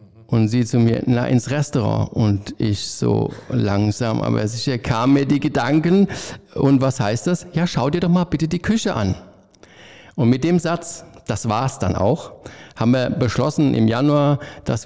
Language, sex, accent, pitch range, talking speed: German, male, German, 110-140 Hz, 180 wpm